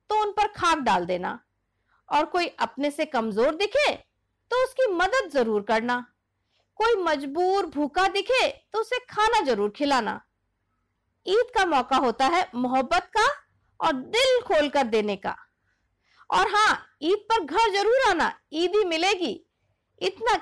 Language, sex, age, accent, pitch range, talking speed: Hindi, female, 50-69, native, 260-385 Hz, 140 wpm